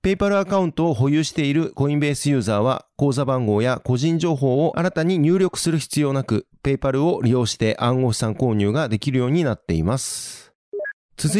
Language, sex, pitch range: Japanese, male, 125-160 Hz